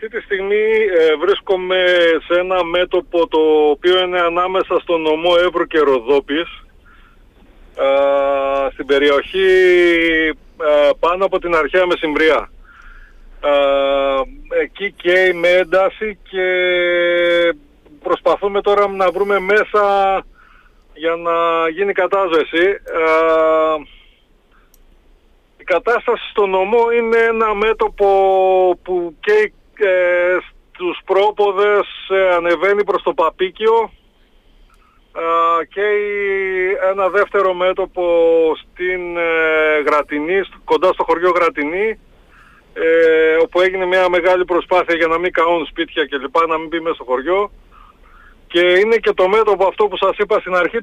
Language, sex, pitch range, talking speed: Greek, male, 165-205 Hz, 110 wpm